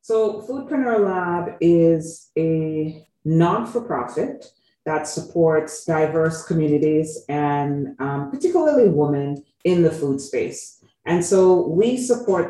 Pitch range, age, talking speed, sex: 145-180 Hz, 30-49, 105 wpm, female